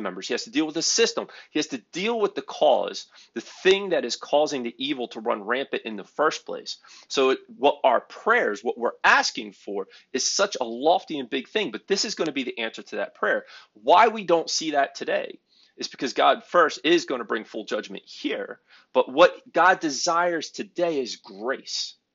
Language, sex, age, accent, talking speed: English, male, 30-49, American, 215 wpm